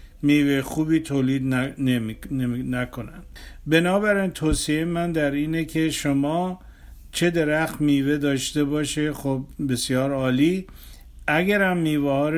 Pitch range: 130-160 Hz